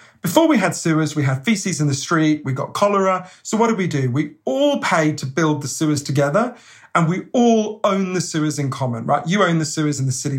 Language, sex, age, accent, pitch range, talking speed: English, male, 40-59, British, 145-205 Hz, 245 wpm